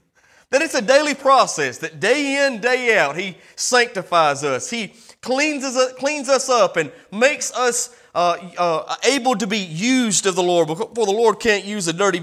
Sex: male